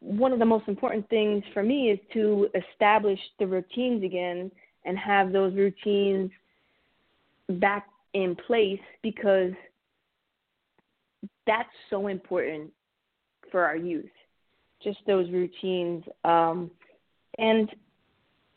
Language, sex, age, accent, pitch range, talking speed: English, female, 20-39, American, 185-215 Hz, 105 wpm